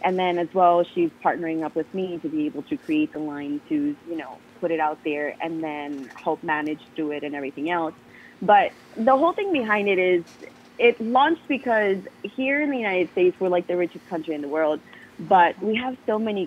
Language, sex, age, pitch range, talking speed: English, female, 20-39, 155-200 Hz, 220 wpm